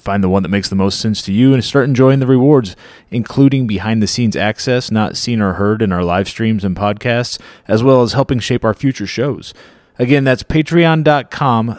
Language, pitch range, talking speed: English, 100-130 Hz, 200 wpm